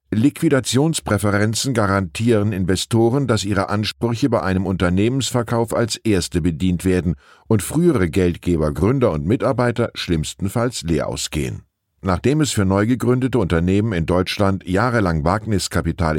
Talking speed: 120 wpm